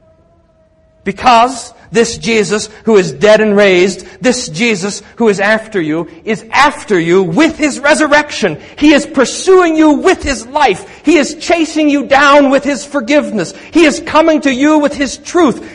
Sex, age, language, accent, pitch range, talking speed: male, 50-69, English, American, 190-285 Hz, 165 wpm